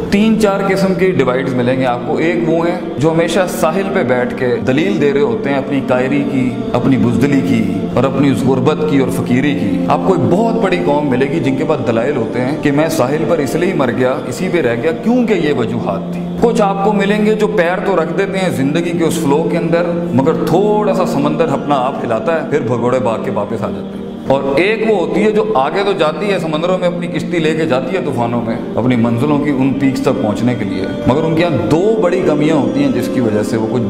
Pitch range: 130-195 Hz